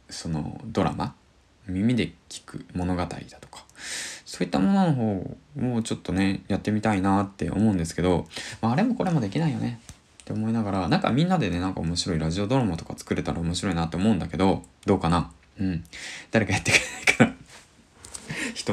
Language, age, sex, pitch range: Japanese, 20-39, male, 85-115 Hz